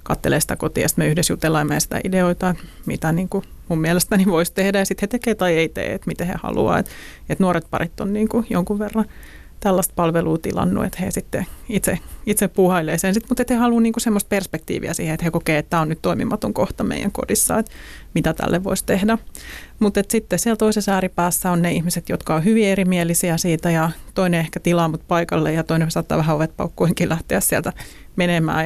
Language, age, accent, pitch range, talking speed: Finnish, 30-49, native, 160-200 Hz, 205 wpm